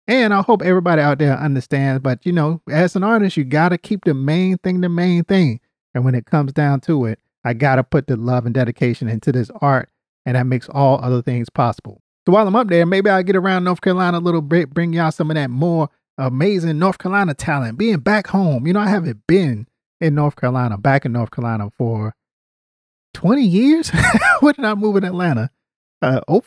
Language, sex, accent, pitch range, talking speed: English, male, American, 130-200 Hz, 215 wpm